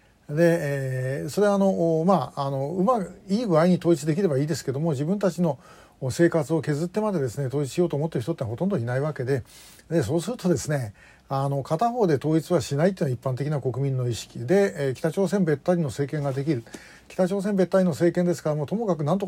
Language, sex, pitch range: Japanese, male, 135-180 Hz